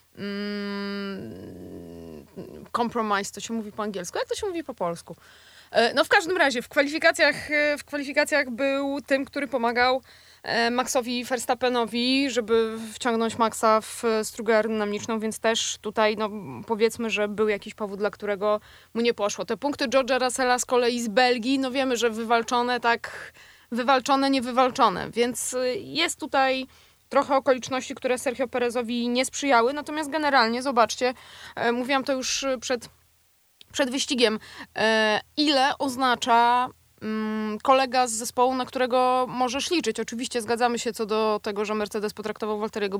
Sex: female